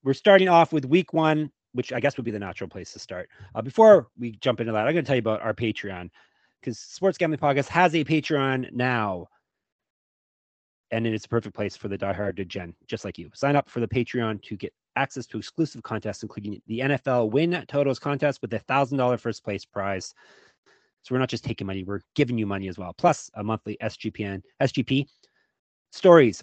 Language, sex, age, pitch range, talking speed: English, male, 30-49, 110-145 Hz, 210 wpm